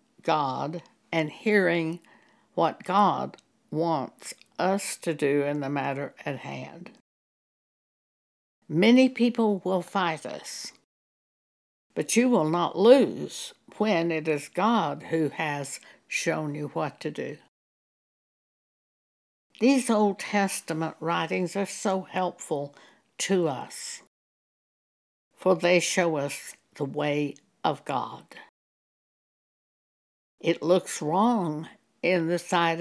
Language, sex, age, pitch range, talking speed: English, female, 60-79, 155-200 Hz, 105 wpm